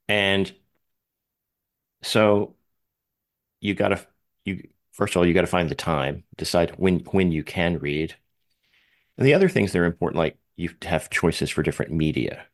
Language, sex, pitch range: English, male, 80-100 Hz